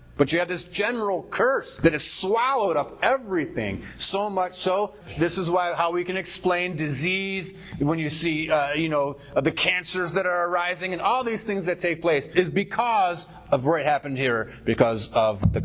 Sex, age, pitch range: male, 40-59, 105-165 Hz